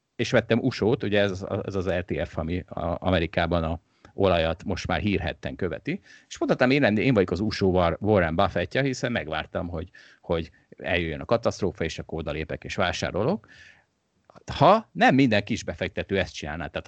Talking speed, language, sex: 165 wpm, Hungarian, male